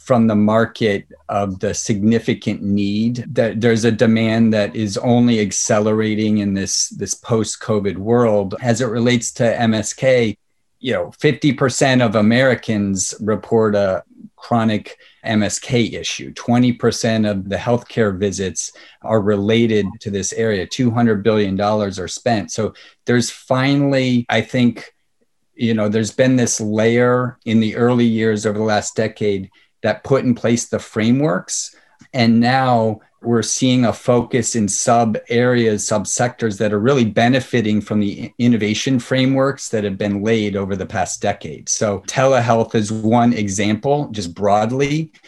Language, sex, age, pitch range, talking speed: English, male, 40-59, 105-120 Hz, 145 wpm